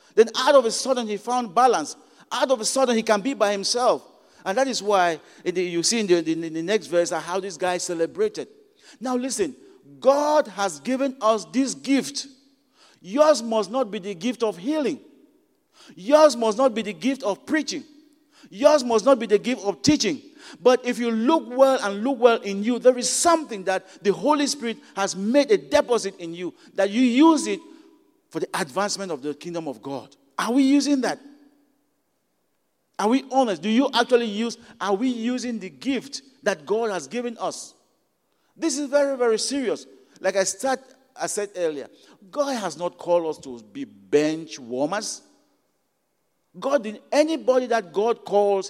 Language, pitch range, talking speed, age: English, 195-275 Hz, 180 wpm, 50-69